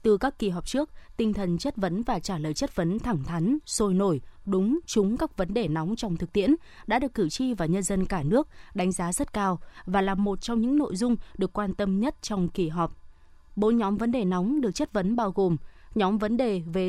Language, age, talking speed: Vietnamese, 20-39, 240 wpm